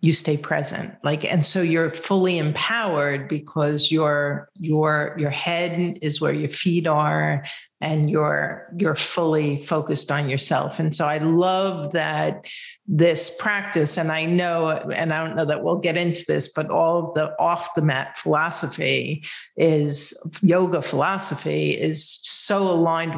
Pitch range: 150-175 Hz